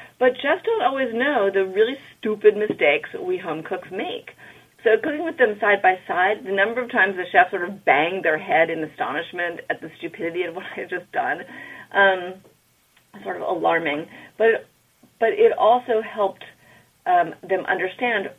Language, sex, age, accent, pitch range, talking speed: English, female, 30-49, American, 170-225 Hz, 175 wpm